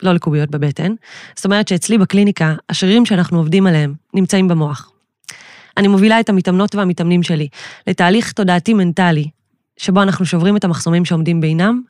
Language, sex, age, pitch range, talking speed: Hebrew, female, 20-39, 170-205 Hz, 140 wpm